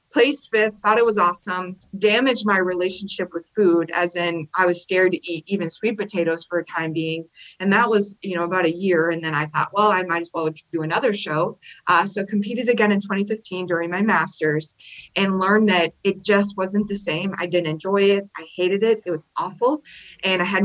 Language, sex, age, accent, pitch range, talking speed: English, female, 20-39, American, 165-195 Hz, 220 wpm